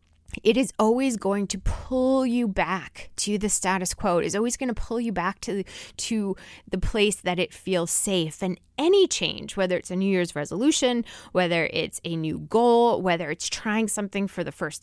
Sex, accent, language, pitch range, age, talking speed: female, American, English, 175-235 Hz, 20-39, 195 wpm